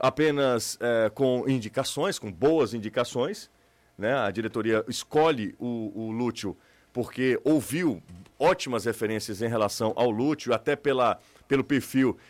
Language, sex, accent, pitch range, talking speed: Portuguese, male, Brazilian, 125-190 Hz, 115 wpm